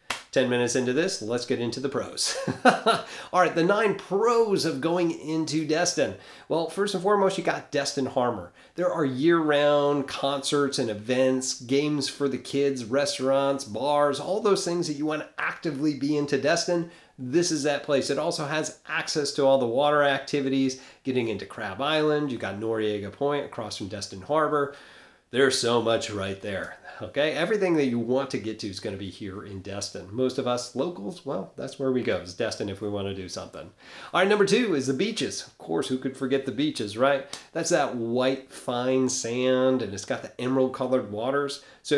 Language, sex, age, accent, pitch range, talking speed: English, male, 30-49, American, 120-150 Hz, 195 wpm